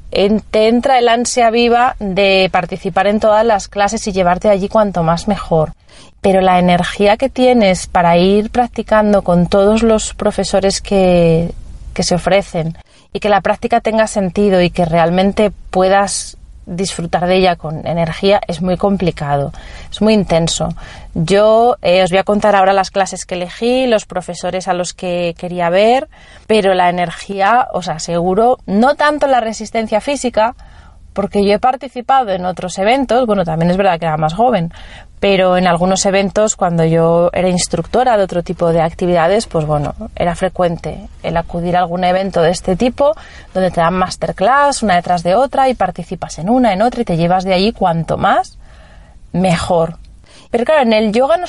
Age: 30-49